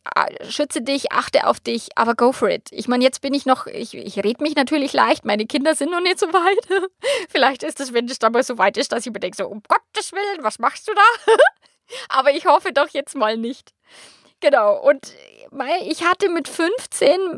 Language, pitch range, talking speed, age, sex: German, 225-305 Hz, 220 wpm, 20-39, female